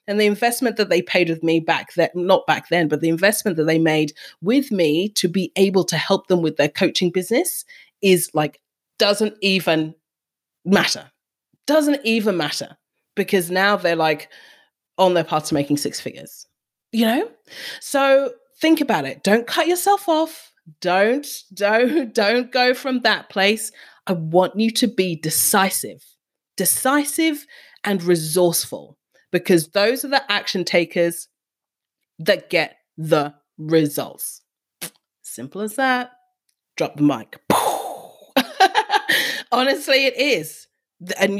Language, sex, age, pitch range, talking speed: English, female, 30-49, 170-255 Hz, 140 wpm